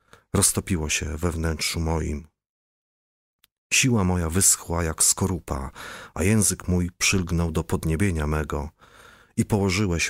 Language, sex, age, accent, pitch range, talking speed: Polish, male, 30-49, native, 80-100 Hz, 115 wpm